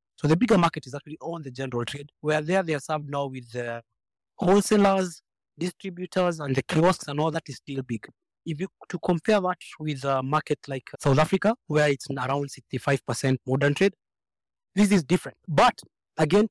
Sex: male